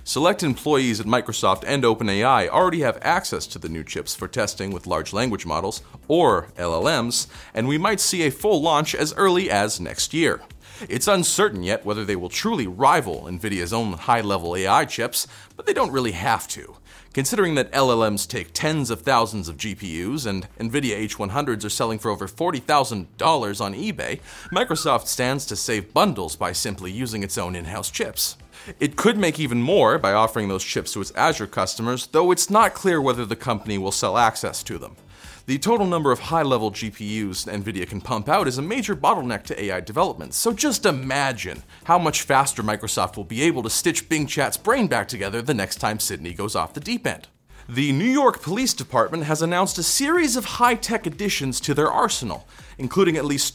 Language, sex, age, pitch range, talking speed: English, male, 40-59, 100-160 Hz, 190 wpm